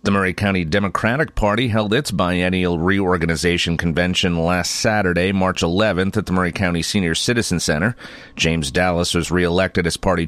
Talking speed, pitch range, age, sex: 160 wpm, 85-100 Hz, 40-59, male